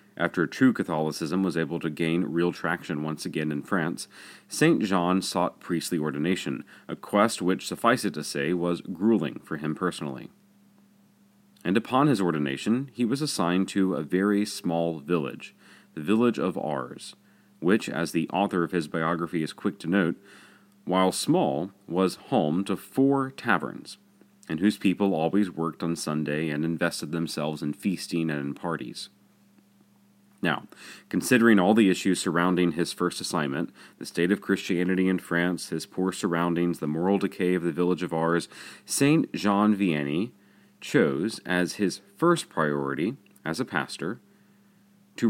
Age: 30-49